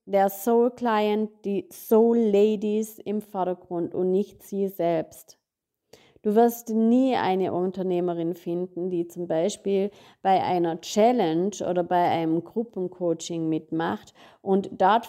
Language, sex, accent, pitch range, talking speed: German, female, German, 180-220 Hz, 115 wpm